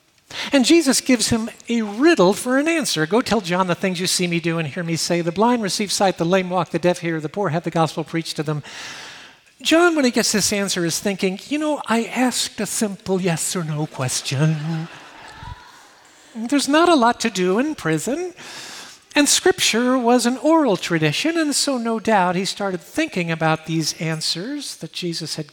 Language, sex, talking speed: English, male, 200 wpm